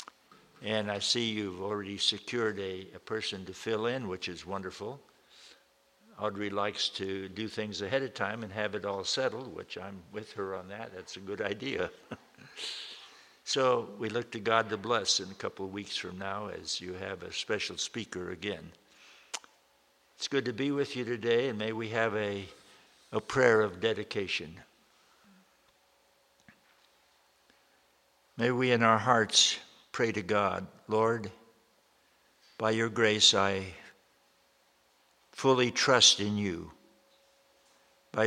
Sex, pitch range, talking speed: male, 100-115 Hz, 145 wpm